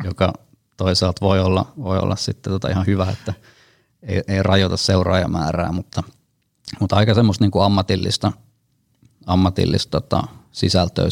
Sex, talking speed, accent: male, 135 wpm, native